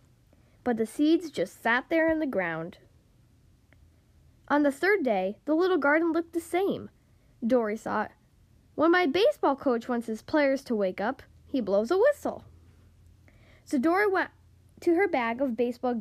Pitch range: 205-330 Hz